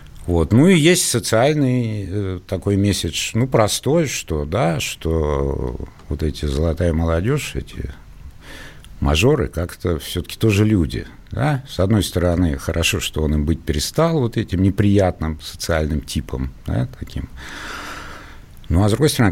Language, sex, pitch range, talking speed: Russian, male, 80-110 Hz, 135 wpm